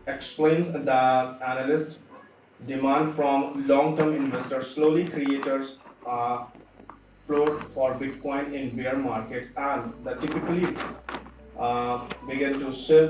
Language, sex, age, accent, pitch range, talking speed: English, male, 30-49, Indian, 120-145 Hz, 115 wpm